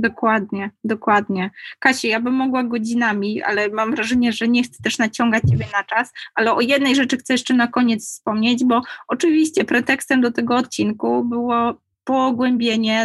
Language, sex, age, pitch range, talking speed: Polish, female, 20-39, 210-265 Hz, 160 wpm